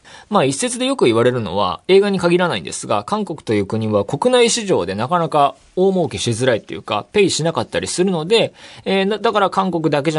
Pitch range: 100-160 Hz